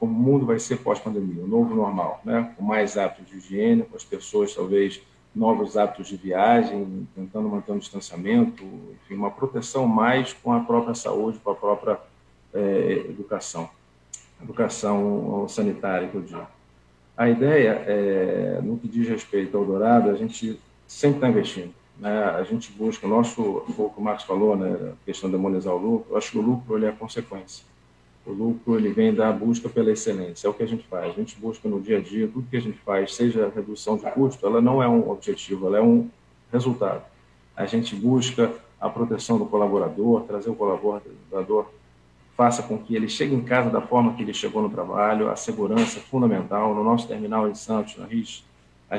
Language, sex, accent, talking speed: Portuguese, male, Brazilian, 195 wpm